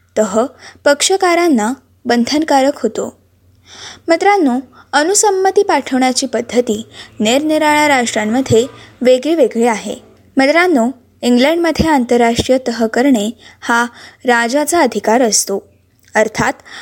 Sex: female